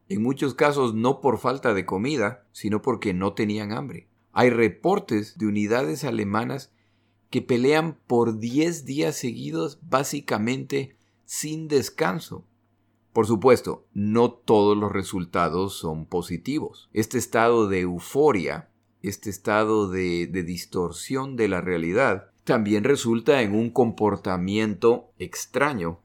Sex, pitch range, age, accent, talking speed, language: male, 95-120 Hz, 40-59, Mexican, 120 wpm, Spanish